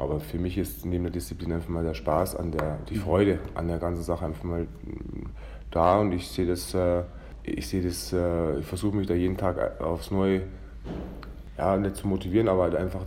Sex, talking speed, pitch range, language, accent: male, 200 wpm, 85-100 Hz, German, German